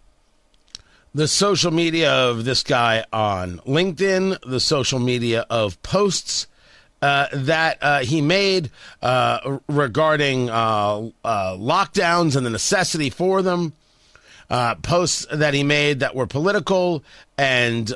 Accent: American